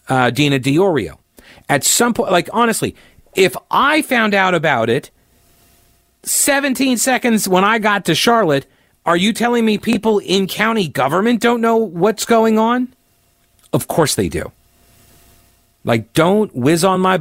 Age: 40-59